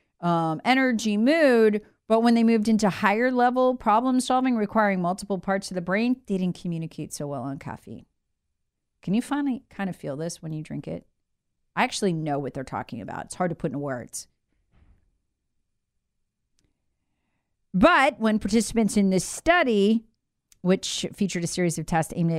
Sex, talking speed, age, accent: female, 170 wpm, 40-59, American